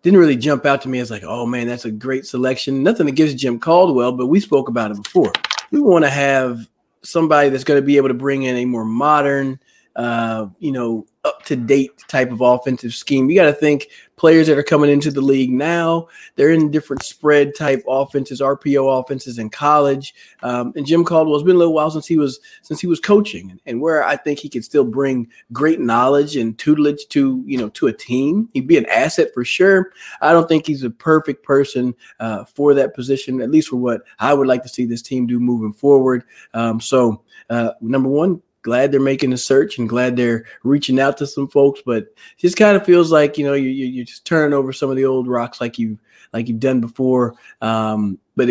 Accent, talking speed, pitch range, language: American, 230 wpm, 120-150 Hz, English